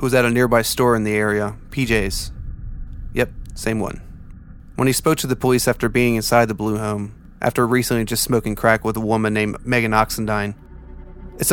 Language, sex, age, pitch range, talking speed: English, male, 30-49, 110-125 Hz, 185 wpm